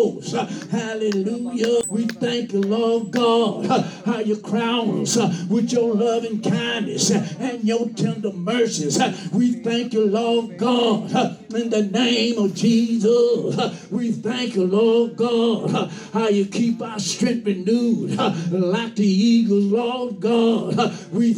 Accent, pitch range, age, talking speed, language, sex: American, 205-230 Hz, 50-69, 130 wpm, English, male